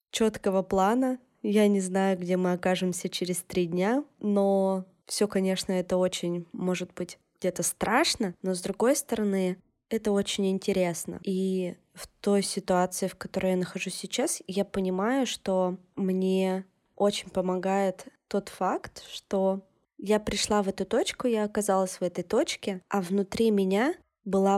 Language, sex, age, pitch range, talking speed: Russian, female, 20-39, 185-210 Hz, 145 wpm